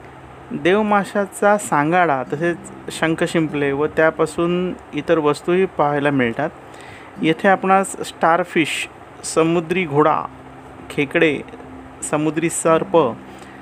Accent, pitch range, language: native, 150-180 Hz, Marathi